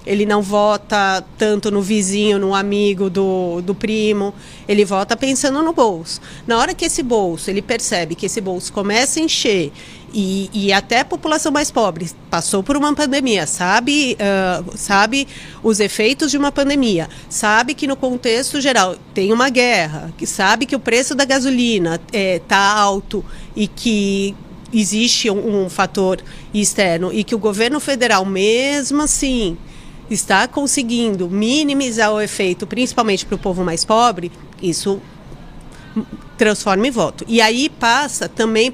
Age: 40-59